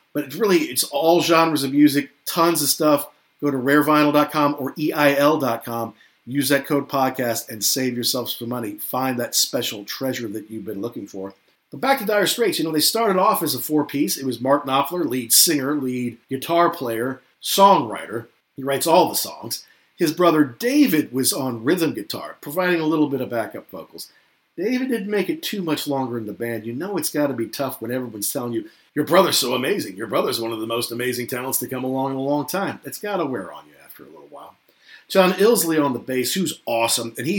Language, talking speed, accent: English, 215 wpm, American